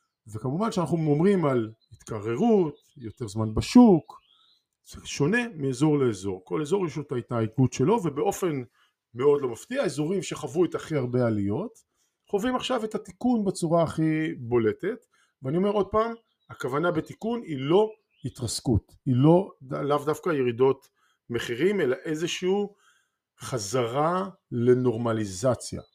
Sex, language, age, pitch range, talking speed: male, Hebrew, 50-69, 115-175 Hz, 125 wpm